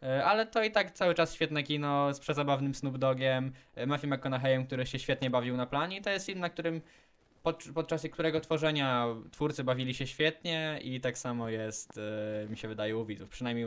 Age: 10-29